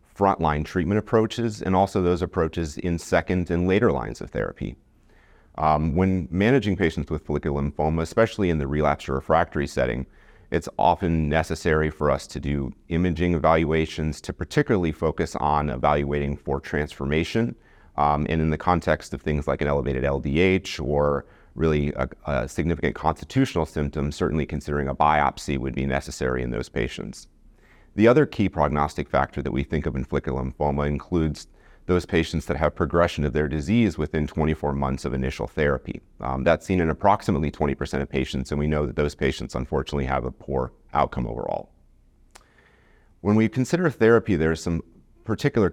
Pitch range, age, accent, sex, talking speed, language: 70-90 Hz, 30-49, American, male, 165 wpm, English